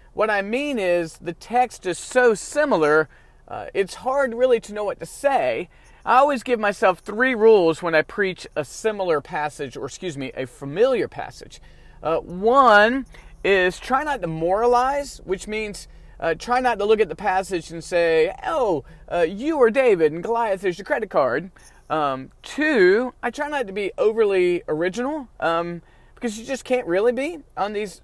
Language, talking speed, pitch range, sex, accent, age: English, 180 wpm, 170-255 Hz, male, American, 30-49